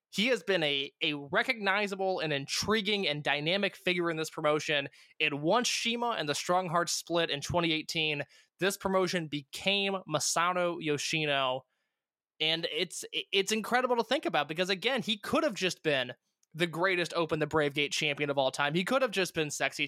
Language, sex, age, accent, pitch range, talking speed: English, male, 20-39, American, 155-200 Hz, 175 wpm